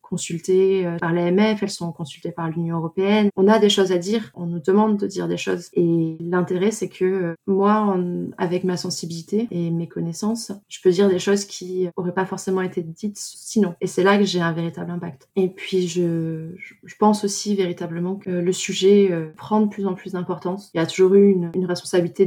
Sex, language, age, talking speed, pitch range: female, French, 20-39, 210 wpm, 170-195 Hz